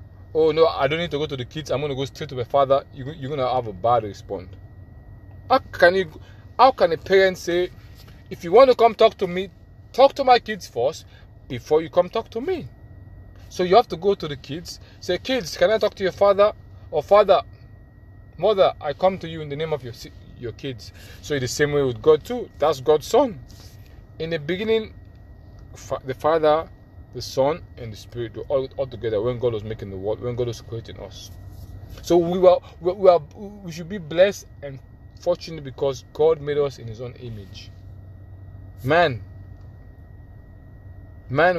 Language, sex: English, male